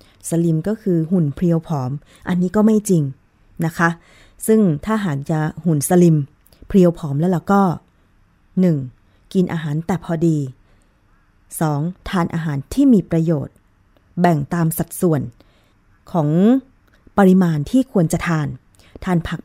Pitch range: 150-200 Hz